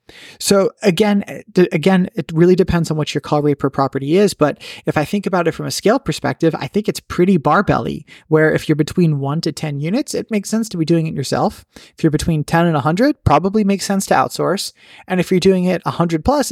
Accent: American